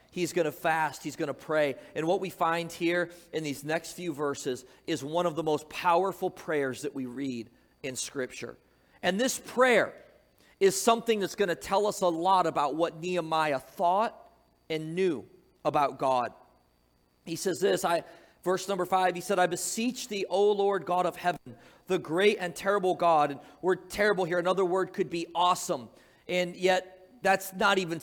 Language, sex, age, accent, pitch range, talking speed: English, male, 40-59, American, 160-195 Hz, 185 wpm